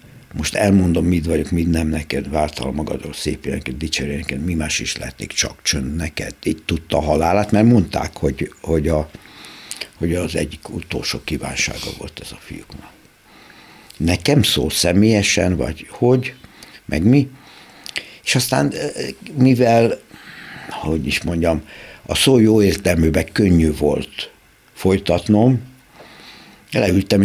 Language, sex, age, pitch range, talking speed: Hungarian, male, 60-79, 80-105 Hz, 130 wpm